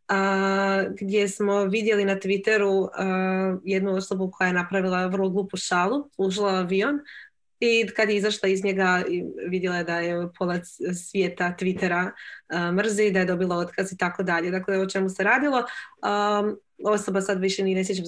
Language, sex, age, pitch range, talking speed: Croatian, female, 20-39, 180-210 Hz, 165 wpm